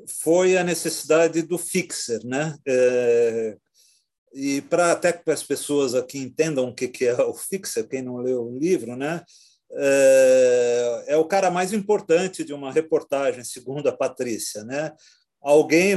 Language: Portuguese